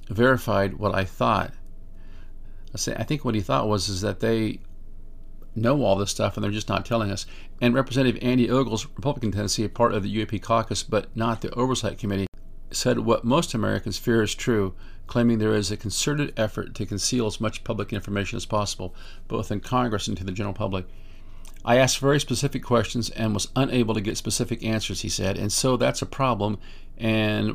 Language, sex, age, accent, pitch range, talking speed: English, male, 50-69, American, 95-120 Hz, 200 wpm